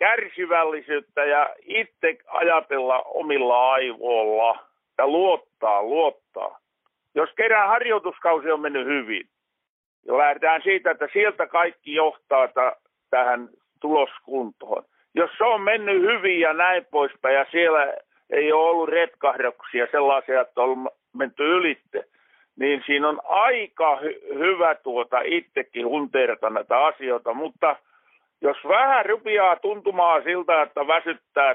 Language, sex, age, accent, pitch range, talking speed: Finnish, male, 50-69, native, 140-210 Hz, 115 wpm